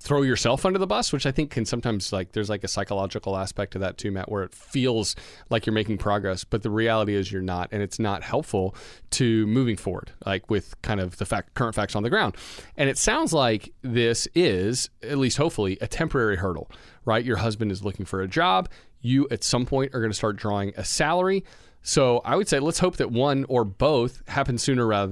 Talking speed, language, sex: 225 wpm, English, male